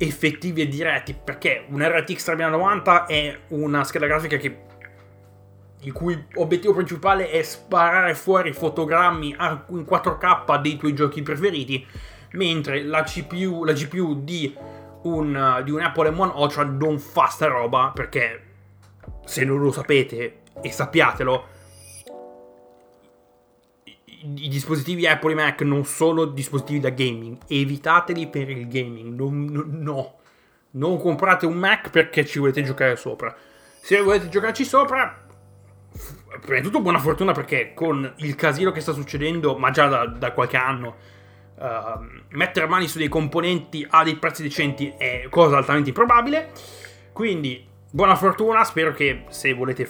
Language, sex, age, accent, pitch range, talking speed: Italian, male, 20-39, native, 125-165 Hz, 140 wpm